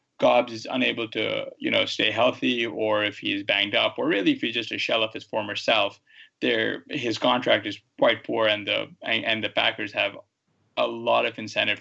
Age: 20-39